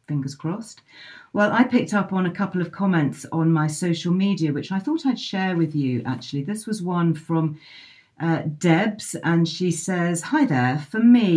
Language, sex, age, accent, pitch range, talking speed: English, female, 40-59, British, 145-185 Hz, 190 wpm